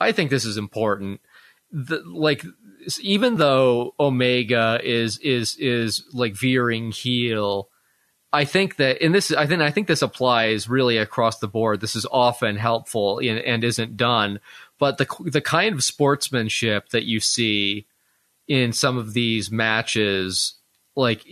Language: English